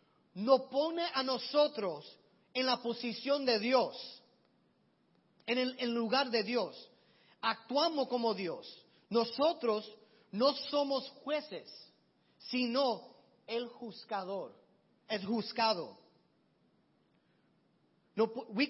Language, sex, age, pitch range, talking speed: Spanish, male, 30-49, 200-250 Hz, 95 wpm